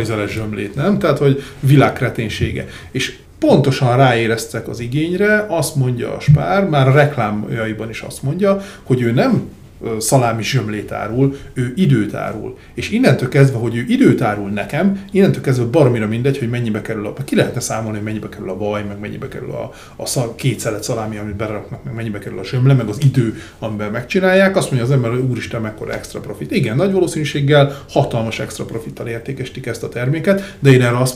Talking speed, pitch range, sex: 185 wpm, 115-145 Hz, male